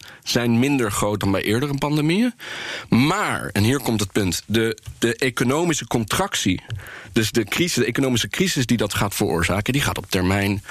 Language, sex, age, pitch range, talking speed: Dutch, male, 40-59, 105-125 Hz, 175 wpm